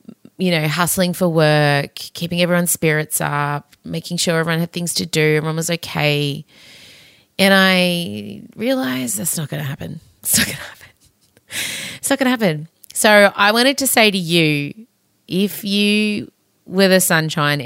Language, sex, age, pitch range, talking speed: English, female, 30-49, 150-195 Hz, 165 wpm